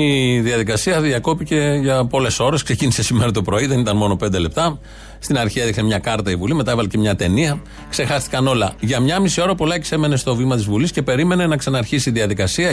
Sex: male